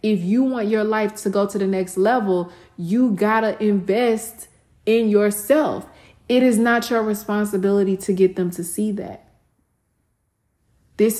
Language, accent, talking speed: English, American, 155 wpm